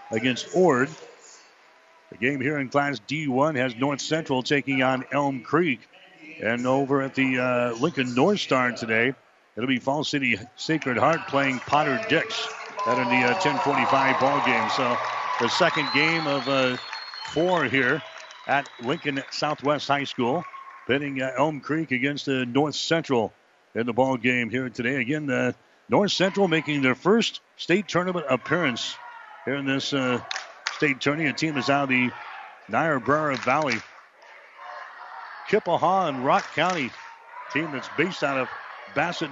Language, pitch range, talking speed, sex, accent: English, 130-150 Hz, 155 wpm, male, American